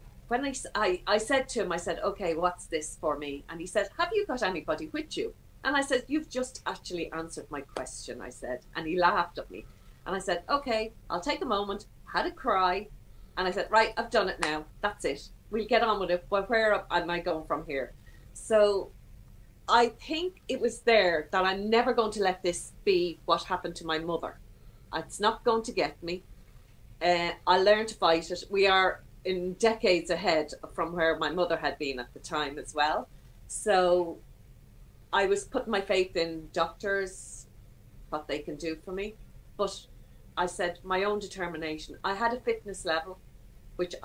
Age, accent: 40-59, Irish